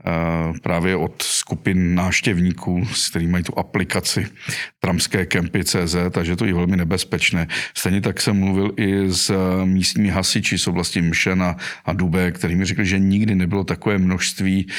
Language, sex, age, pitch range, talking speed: Czech, male, 50-69, 85-100 Hz, 140 wpm